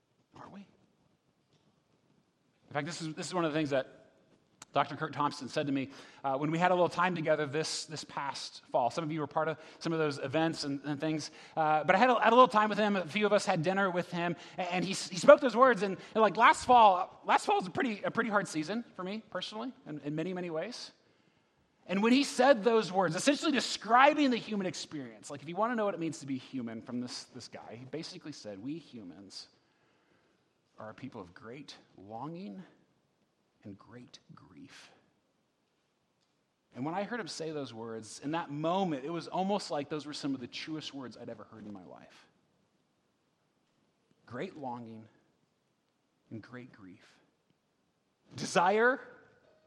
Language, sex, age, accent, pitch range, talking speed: English, male, 30-49, American, 140-195 Hz, 200 wpm